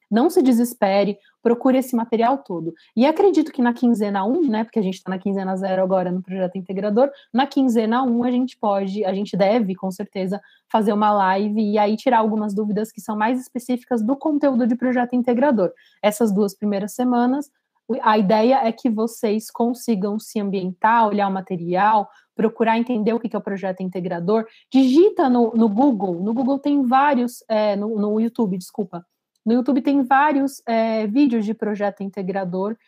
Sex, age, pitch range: female, 20-39, 200-245 Hz